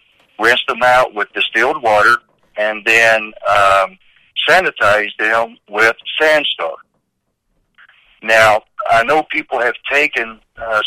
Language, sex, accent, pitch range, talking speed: English, male, American, 100-115 Hz, 110 wpm